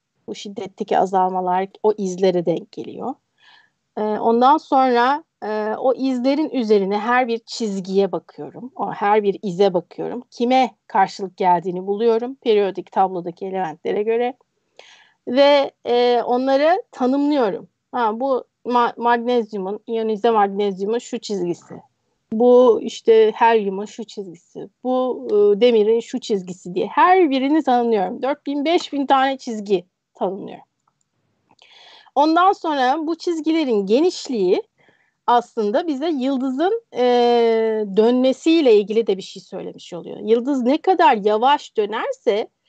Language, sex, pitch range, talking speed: Turkish, female, 210-300 Hz, 115 wpm